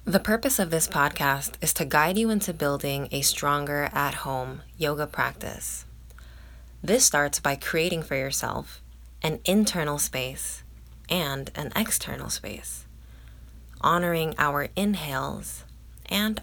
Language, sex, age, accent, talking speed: English, female, 20-39, American, 120 wpm